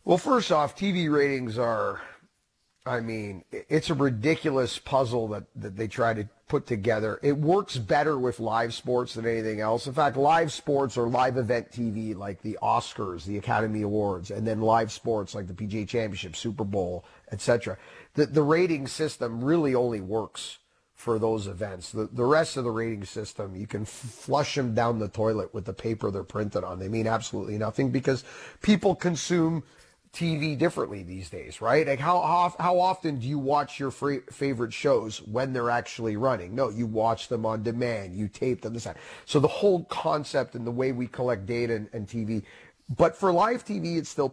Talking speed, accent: 190 wpm, American